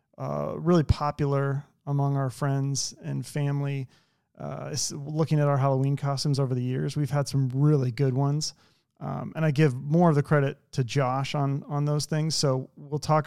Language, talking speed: English, 180 wpm